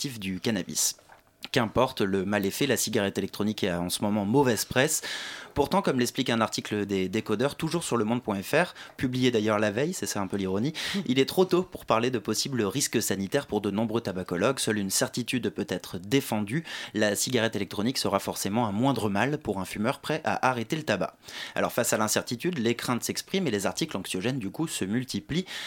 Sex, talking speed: male, 205 wpm